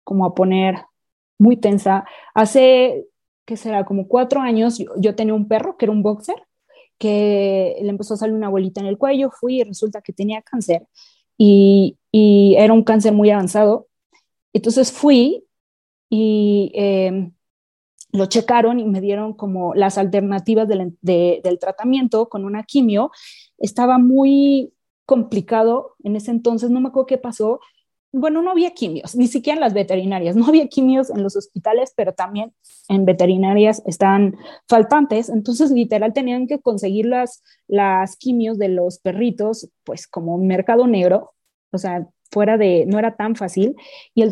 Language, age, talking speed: English, 20-39, 165 wpm